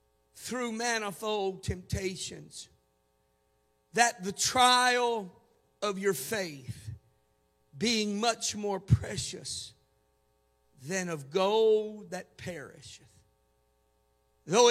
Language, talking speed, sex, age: English, 80 wpm, male, 50-69